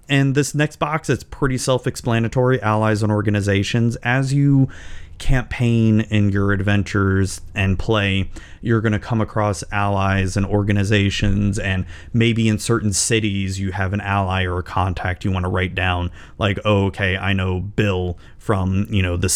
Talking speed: 165 wpm